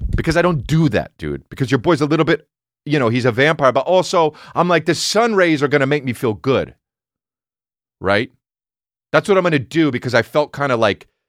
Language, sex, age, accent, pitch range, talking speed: English, male, 30-49, American, 100-140 Hz, 235 wpm